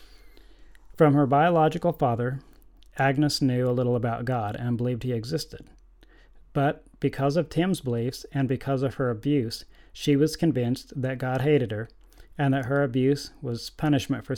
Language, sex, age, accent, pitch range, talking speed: English, male, 30-49, American, 120-145 Hz, 160 wpm